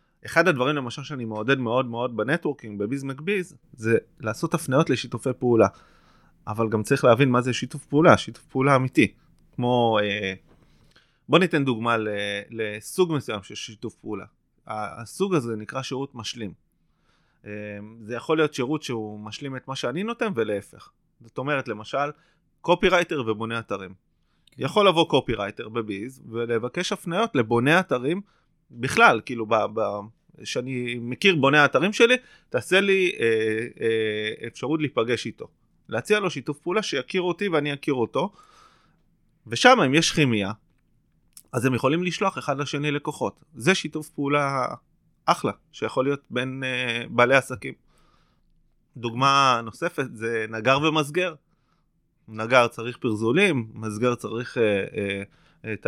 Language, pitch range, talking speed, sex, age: Hebrew, 115-155 Hz, 125 wpm, male, 20-39